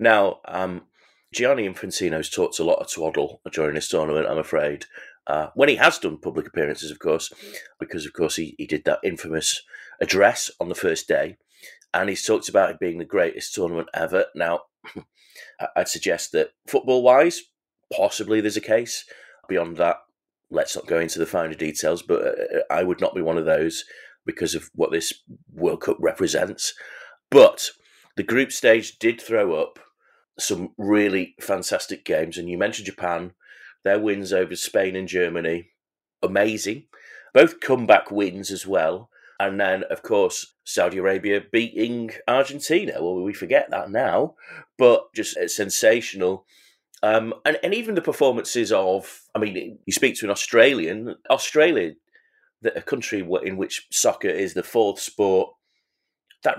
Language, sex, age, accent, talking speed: English, male, 30-49, British, 155 wpm